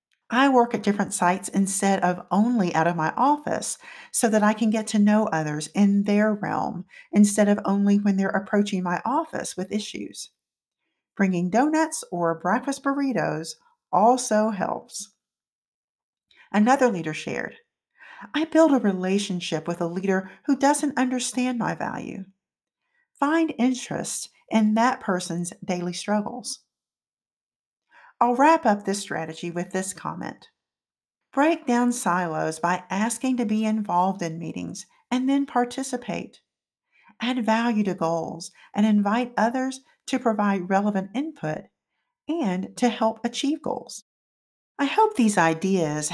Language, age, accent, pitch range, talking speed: English, 50-69, American, 190-250 Hz, 135 wpm